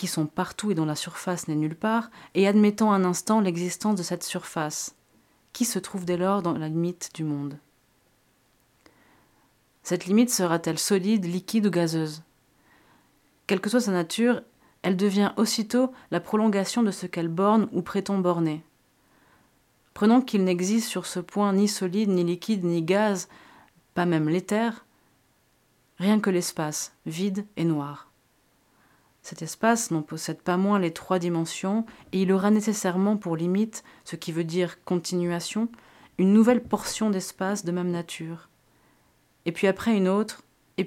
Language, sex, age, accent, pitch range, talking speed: French, female, 30-49, French, 170-205 Hz, 155 wpm